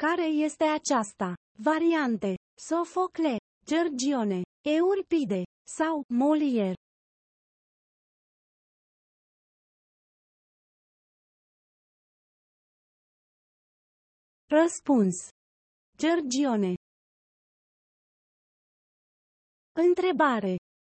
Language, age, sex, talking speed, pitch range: Romanian, 30-49, female, 35 wpm, 230-320 Hz